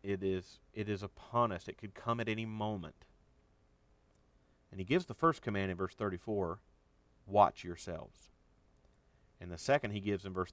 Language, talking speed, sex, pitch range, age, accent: English, 170 wpm, male, 85-110 Hz, 40-59, American